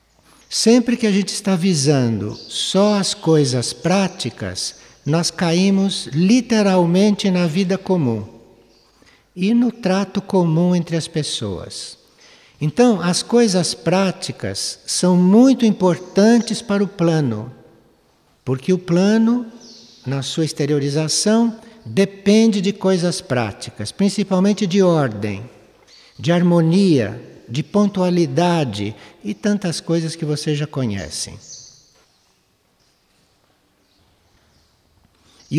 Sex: male